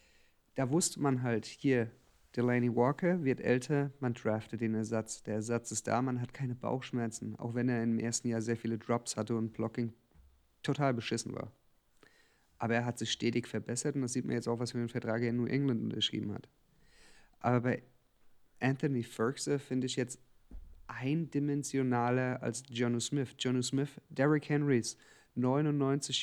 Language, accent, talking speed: German, German, 170 wpm